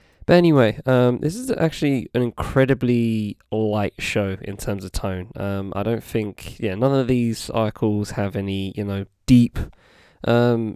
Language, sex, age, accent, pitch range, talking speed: English, male, 20-39, British, 100-120 Hz, 160 wpm